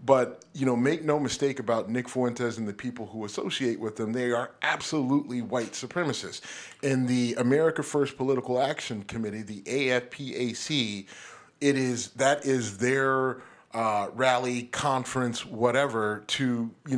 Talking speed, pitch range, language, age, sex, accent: 135 wpm, 115-140 Hz, English, 30-49, male, American